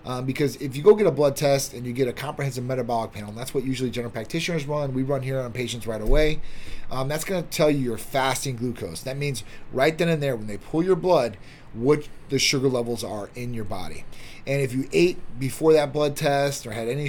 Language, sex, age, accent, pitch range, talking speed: English, male, 30-49, American, 120-145 Hz, 240 wpm